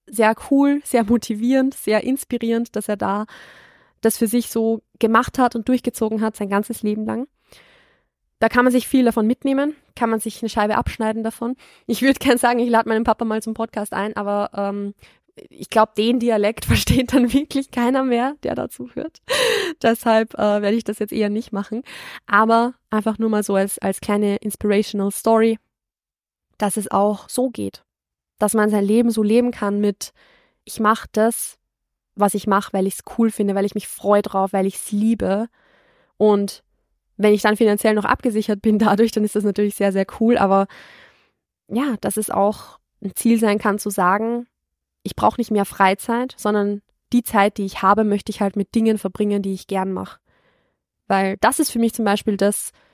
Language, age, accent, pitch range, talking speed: German, 20-39, German, 205-235 Hz, 195 wpm